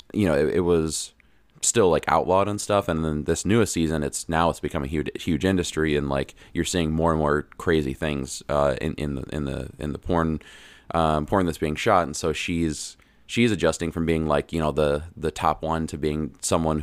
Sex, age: male, 20-39